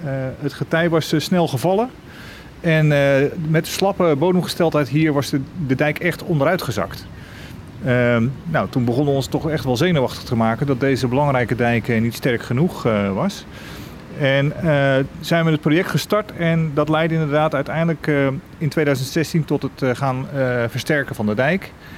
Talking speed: 175 wpm